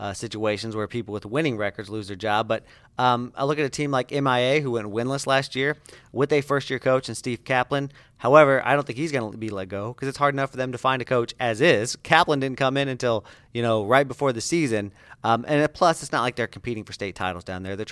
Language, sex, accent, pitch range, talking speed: English, male, American, 115-145 Hz, 260 wpm